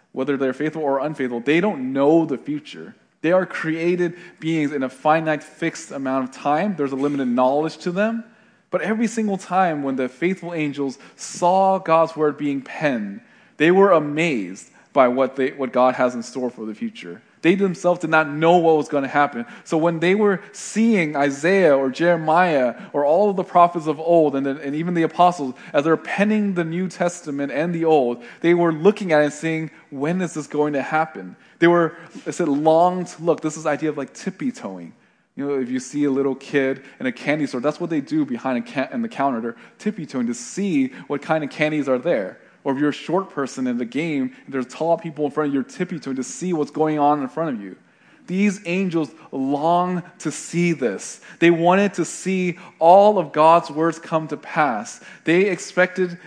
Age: 20-39